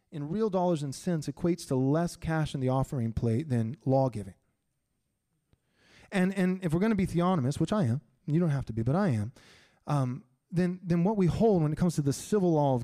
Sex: male